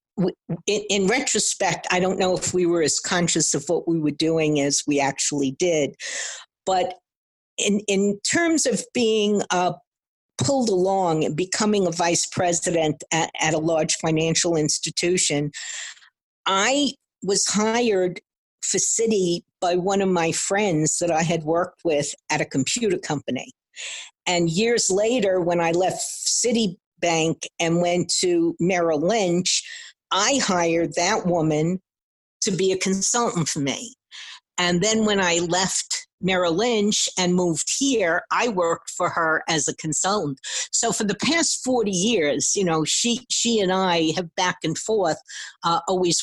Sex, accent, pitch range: female, American, 165-205 Hz